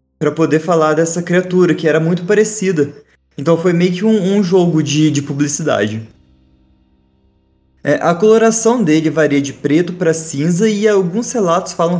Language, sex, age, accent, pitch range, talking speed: Portuguese, male, 20-39, Brazilian, 130-185 Hz, 160 wpm